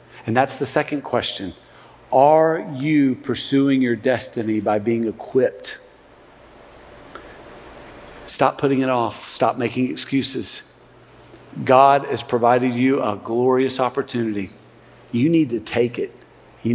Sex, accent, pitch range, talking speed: male, American, 125-155 Hz, 120 wpm